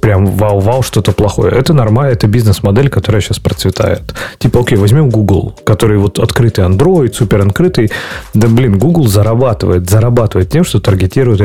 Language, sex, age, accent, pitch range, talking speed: Russian, male, 30-49, native, 100-125 Hz, 145 wpm